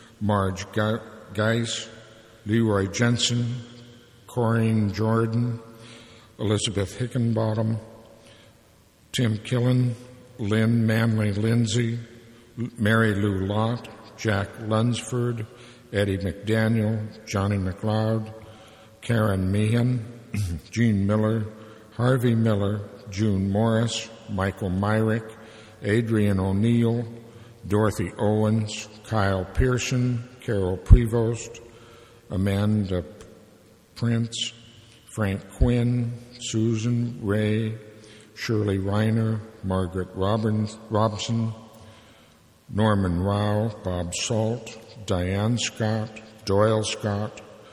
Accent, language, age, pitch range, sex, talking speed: American, English, 60-79, 105-115 Hz, male, 75 wpm